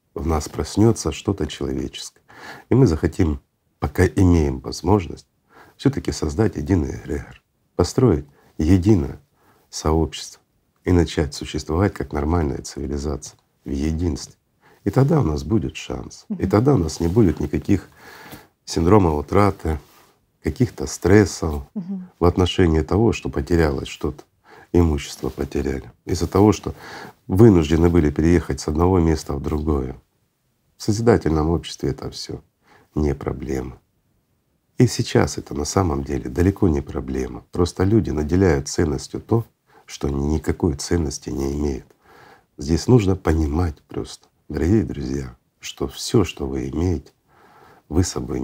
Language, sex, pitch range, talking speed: Russian, male, 70-95 Hz, 125 wpm